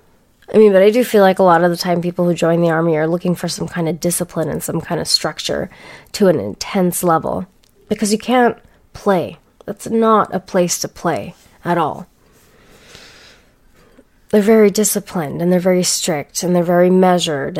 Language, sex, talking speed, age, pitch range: English, female, 190 wpm, 20-39, 175-215 Hz